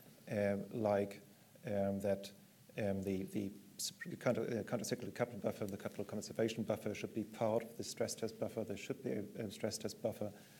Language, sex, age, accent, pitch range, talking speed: English, male, 40-59, German, 100-120 Hz, 185 wpm